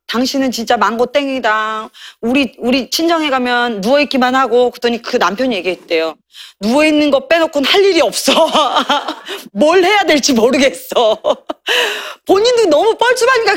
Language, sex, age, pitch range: Korean, female, 30-49, 240-330 Hz